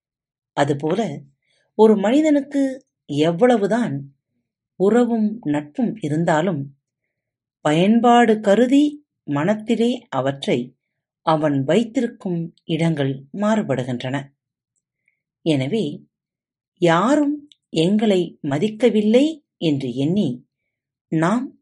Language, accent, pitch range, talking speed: Tamil, native, 140-220 Hz, 60 wpm